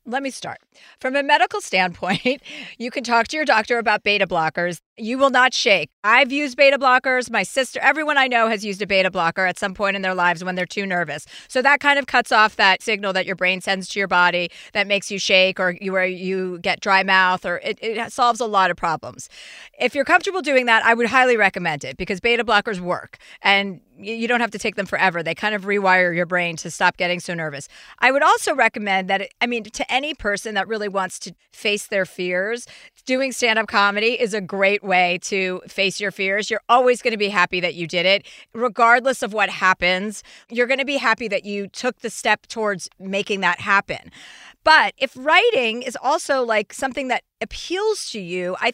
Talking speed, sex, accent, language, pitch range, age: 220 wpm, female, American, English, 185-250 Hz, 40-59